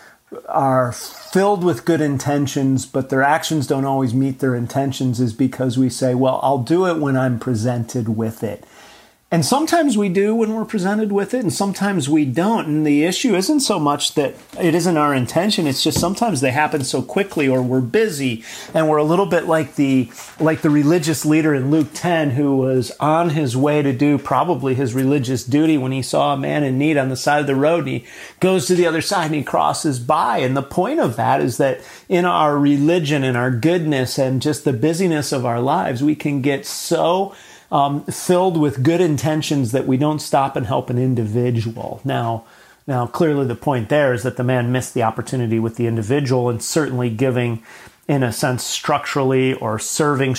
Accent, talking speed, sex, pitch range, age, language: American, 205 wpm, male, 125-155 Hz, 40-59, English